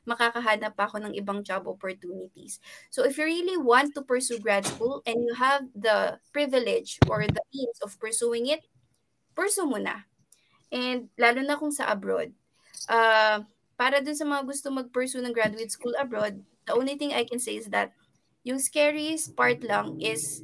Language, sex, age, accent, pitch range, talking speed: Filipino, female, 20-39, native, 210-265 Hz, 175 wpm